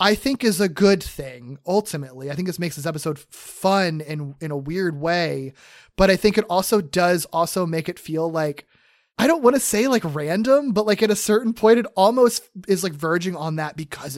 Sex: male